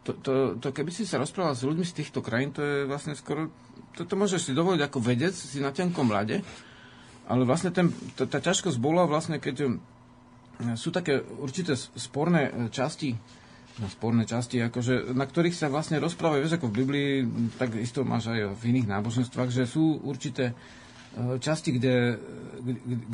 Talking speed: 165 wpm